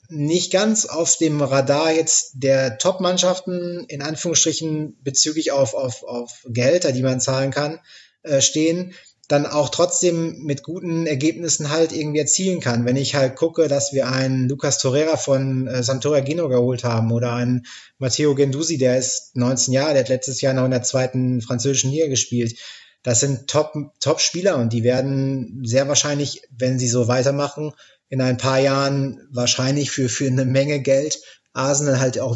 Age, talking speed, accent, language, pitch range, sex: 20-39, 170 wpm, German, German, 125-155 Hz, male